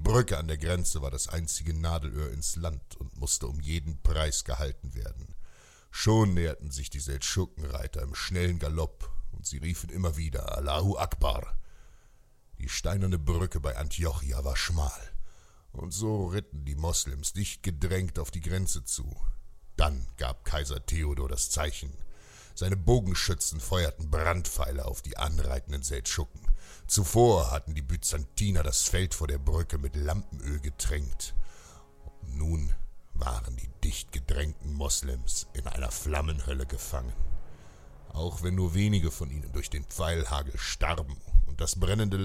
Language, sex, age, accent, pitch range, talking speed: German, male, 60-79, German, 70-85 Hz, 140 wpm